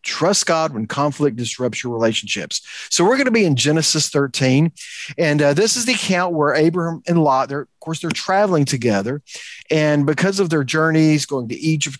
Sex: male